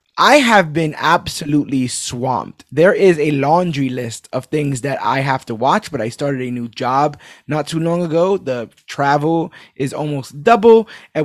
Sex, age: male, 20-39